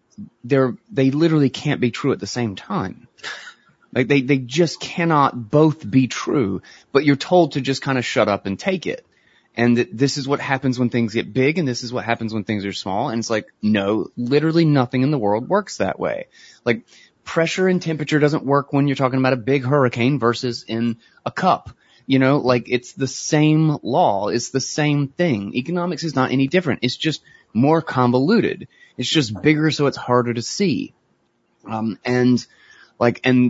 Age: 30-49